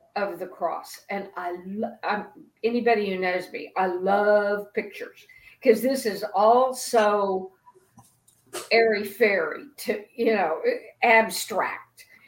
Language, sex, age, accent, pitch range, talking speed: English, female, 50-69, American, 200-245 Hz, 115 wpm